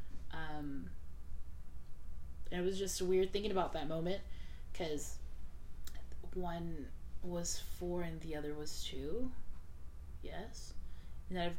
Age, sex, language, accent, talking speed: 20-39, female, English, American, 115 wpm